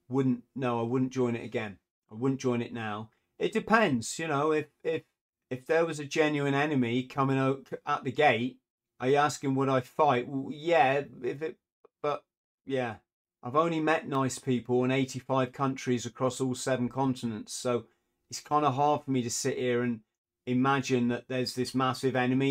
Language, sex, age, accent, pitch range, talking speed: English, male, 30-49, British, 125-150 Hz, 185 wpm